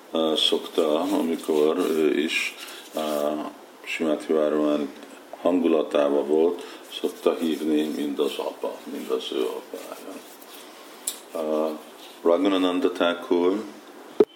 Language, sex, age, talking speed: Hungarian, male, 50-69, 90 wpm